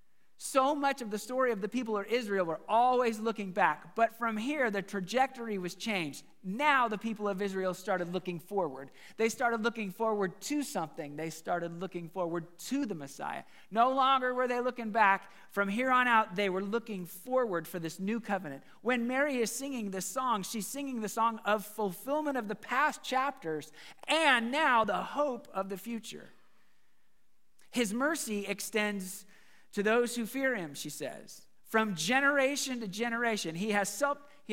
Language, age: English, 40-59